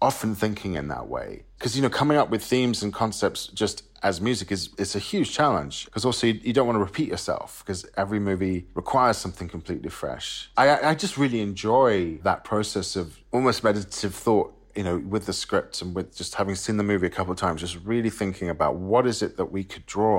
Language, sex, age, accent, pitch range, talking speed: English, male, 40-59, British, 90-110 Hz, 225 wpm